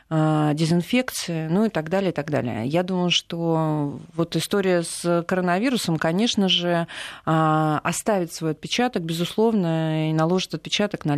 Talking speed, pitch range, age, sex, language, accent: 135 wpm, 160-190 Hz, 30-49, female, Russian, native